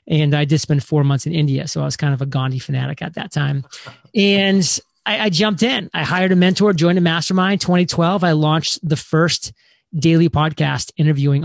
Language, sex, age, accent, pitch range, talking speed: English, male, 30-49, American, 145-175 Hz, 205 wpm